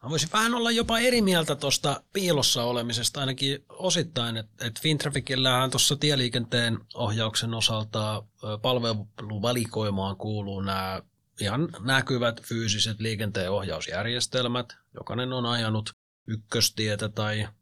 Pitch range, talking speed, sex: 100-120 Hz, 100 wpm, male